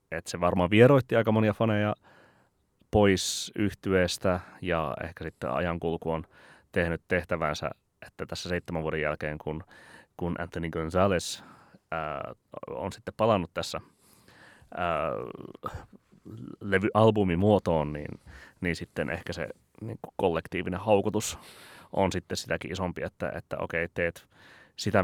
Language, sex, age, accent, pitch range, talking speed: Finnish, male, 30-49, native, 85-105 Hz, 115 wpm